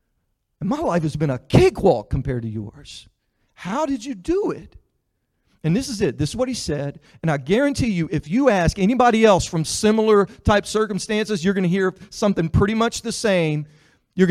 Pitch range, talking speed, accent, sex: 145-215 Hz, 195 wpm, American, male